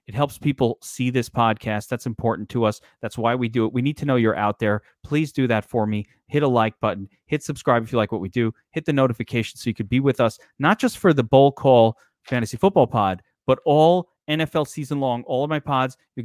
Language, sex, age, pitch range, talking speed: English, male, 30-49, 115-145 Hz, 250 wpm